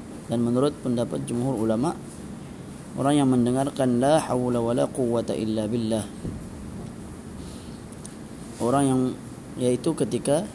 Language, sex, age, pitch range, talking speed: Malay, male, 20-39, 115-140 Hz, 100 wpm